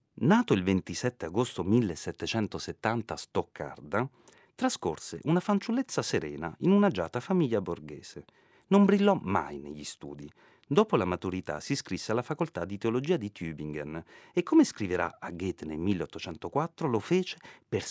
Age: 40-59